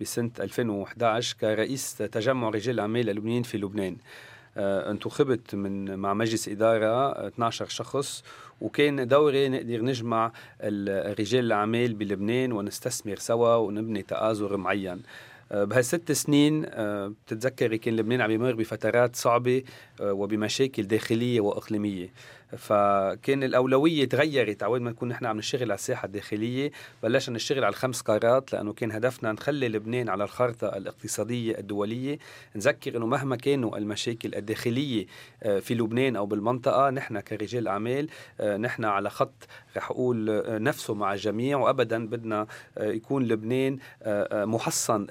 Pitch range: 105-130 Hz